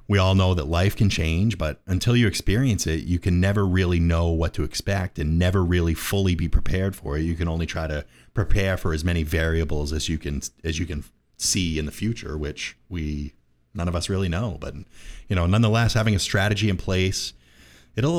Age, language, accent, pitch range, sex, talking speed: 30-49, English, American, 80-100 Hz, male, 215 wpm